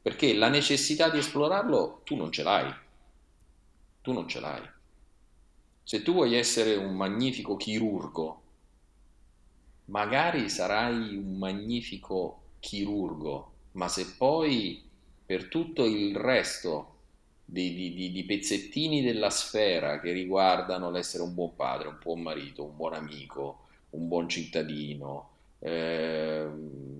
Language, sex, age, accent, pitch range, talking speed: Italian, male, 40-59, native, 80-100 Hz, 115 wpm